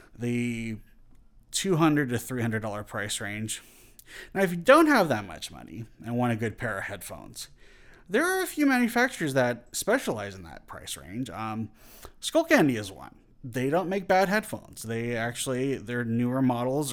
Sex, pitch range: male, 110-135 Hz